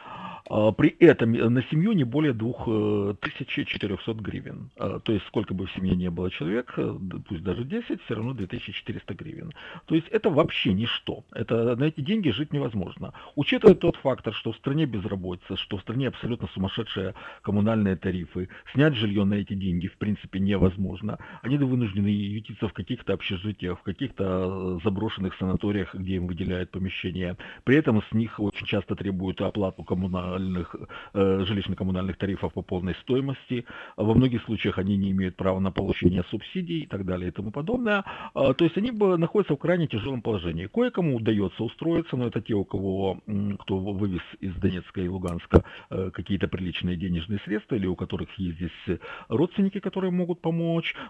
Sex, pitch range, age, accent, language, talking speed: male, 95-140 Hz, 50-69, native, Russian, 160 wpm